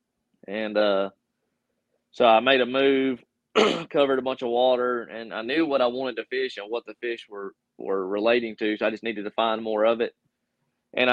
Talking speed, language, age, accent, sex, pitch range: 205 wpm, English, 20-39, American, male, 105-120 Hz